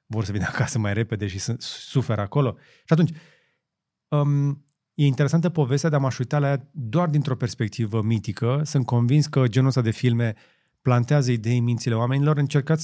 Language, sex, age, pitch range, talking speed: Romanian, male, 30-49, 115-150 Hz, 175 wpm